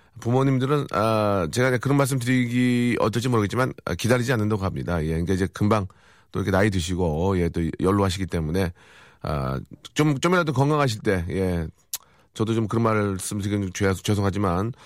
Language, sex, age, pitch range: Korean, male, 40-59, 95-135 Hz